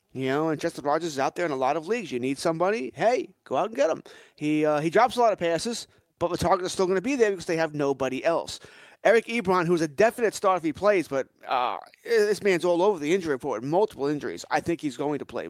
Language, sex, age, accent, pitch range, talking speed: English, male, 30-49, American, 145-185 Hz, 275 wpm